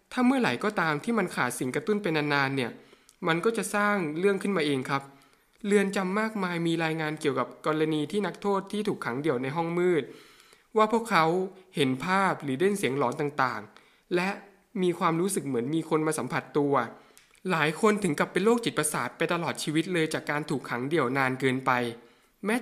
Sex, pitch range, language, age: male, 140-195 Hz, Thai, 20-39